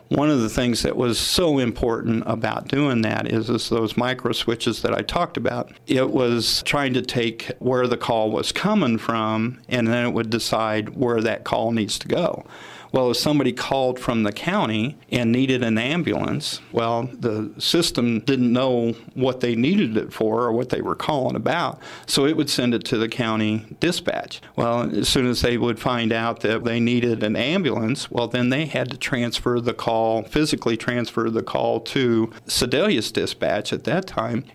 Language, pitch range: English, 115-130 Hz